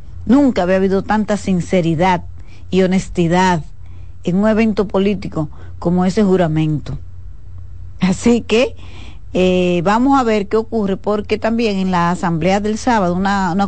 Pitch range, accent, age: 170-205 Hz, American, 40-59